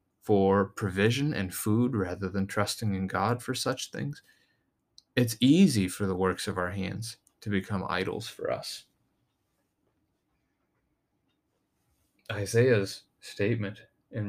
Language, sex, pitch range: English, male, 95-110 Hz